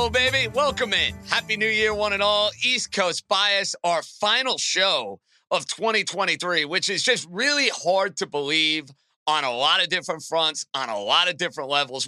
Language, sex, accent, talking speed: English, male, American, 180 wpm